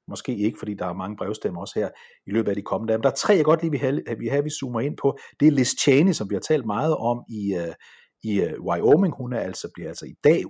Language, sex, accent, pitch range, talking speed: Danish, male, native, 100-160 Hz, 285 wpm